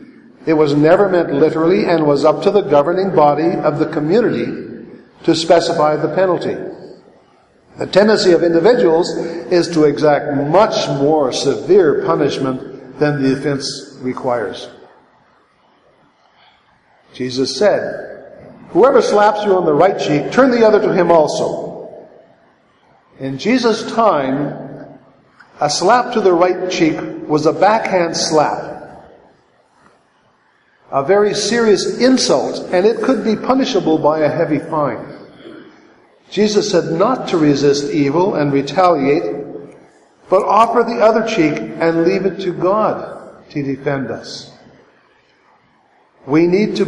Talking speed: 125 wpm